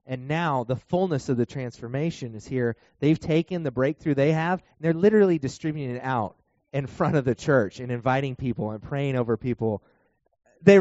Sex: male